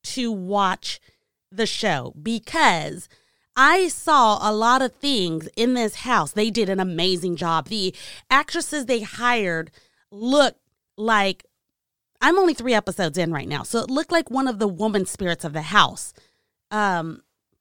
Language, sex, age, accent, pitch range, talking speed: English, female, 30-49, American, 185-240 Hz, 155 wpm